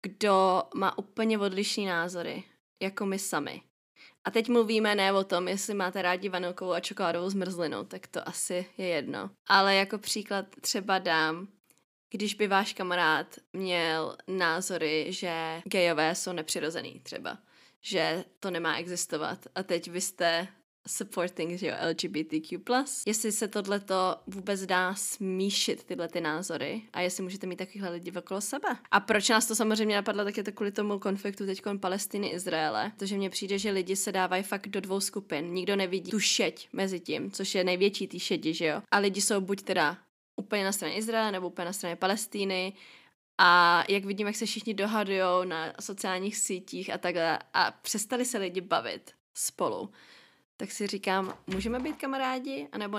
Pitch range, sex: 180-210 Hz, female